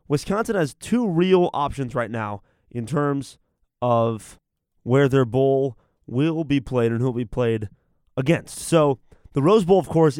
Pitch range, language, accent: 125-160 Hz, English, American